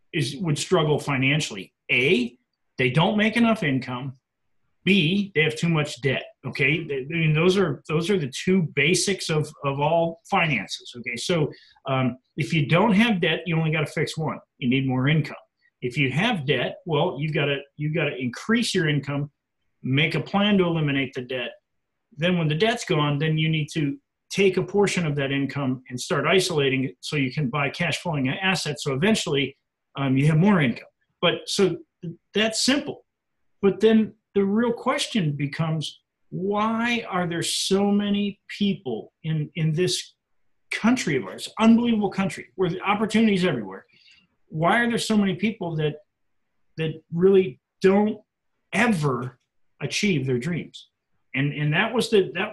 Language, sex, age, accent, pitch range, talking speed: English, male, 40-59, American, 145-195 Hz, 170 wpm